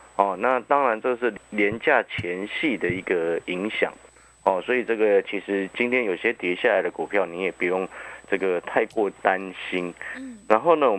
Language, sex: Chinese, male